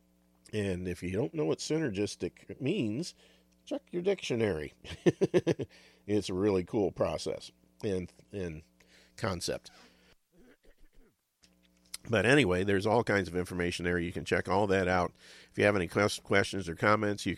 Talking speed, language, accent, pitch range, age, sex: 140 wpm, English, American, 85-105 Hz, 50-69, male